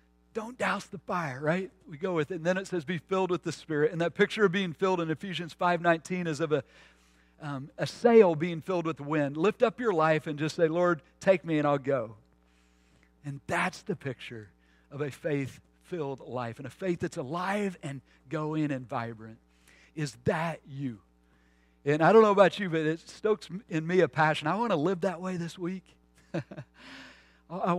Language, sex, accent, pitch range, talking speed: English, male, American, 125-175 Hz, 195 wpm